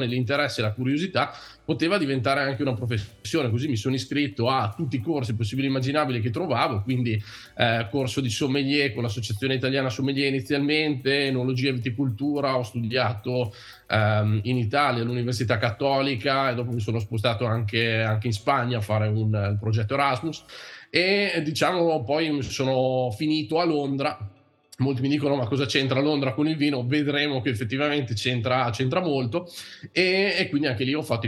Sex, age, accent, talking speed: male, 20-39, native, 165 wpm